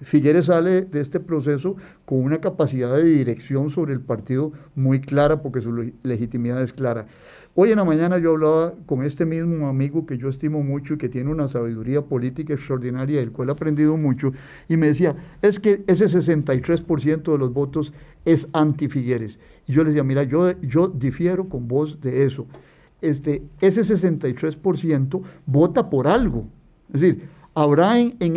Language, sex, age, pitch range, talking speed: Spanish, male, 50-69, 140-170 Hz, 175 wpm